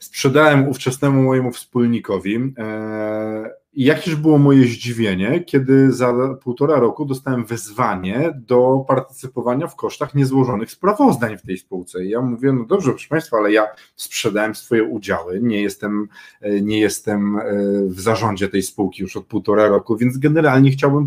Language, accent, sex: Polish, native, male